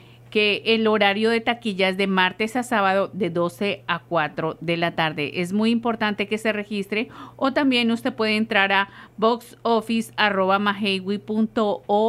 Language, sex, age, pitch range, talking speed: English, female, 50-69, 190-230 Hz, 150 wpm